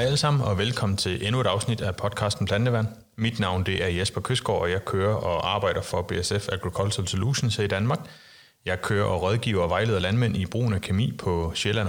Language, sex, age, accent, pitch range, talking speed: Danish, male, 30-49, native, 95-120 Hz, 205 wpm